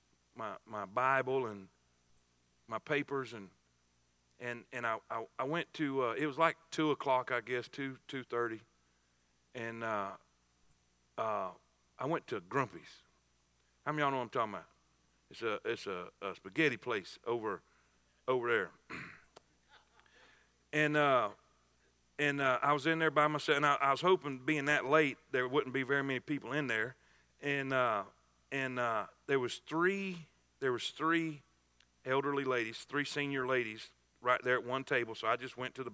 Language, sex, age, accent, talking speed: English, male, 50-69, American, 170 wpm